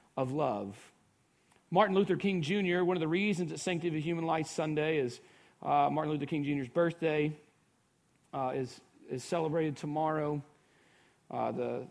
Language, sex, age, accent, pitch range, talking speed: English, male, 40-59, American, 160-215 Hz, 150 wpm